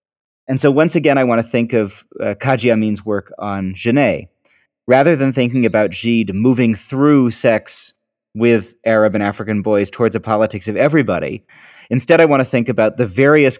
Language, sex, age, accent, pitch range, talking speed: English, male, 30-49, American, 105-130 Hz, 180 wpm